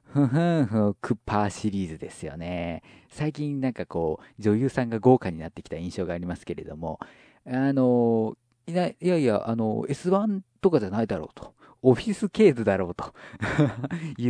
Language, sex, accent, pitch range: Japanese, male, native, 95-130 Hz